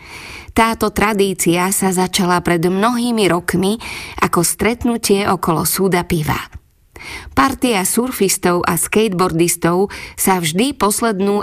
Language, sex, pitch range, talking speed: Slovak, female, 165-210 Hz, 100 wpm